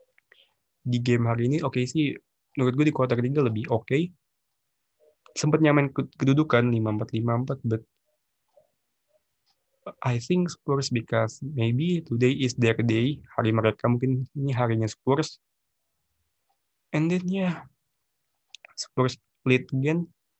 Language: Indonesian